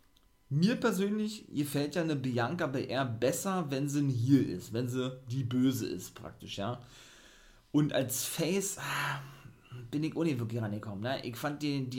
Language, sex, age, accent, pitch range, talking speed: German, male, 40-59, German, 120-160 Hz, 165 wpm